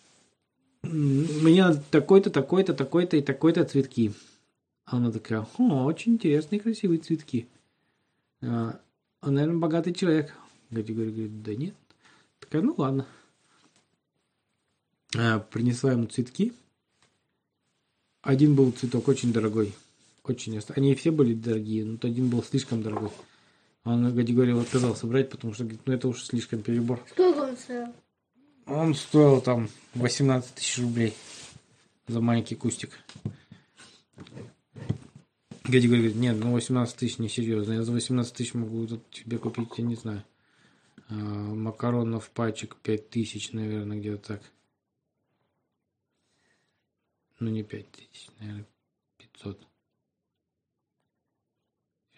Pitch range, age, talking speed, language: 110-140 Hz, 20-39, 115 wpm, Russian